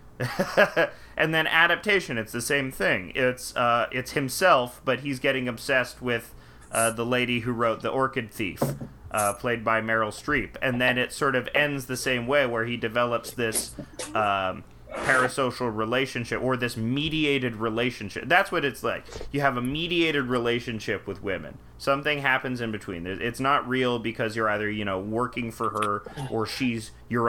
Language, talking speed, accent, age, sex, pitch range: English, 170 wpm, American, 30-49, male, 115-140 Hz